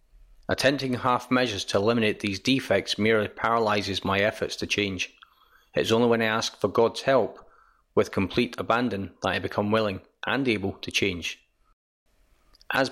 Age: 40-59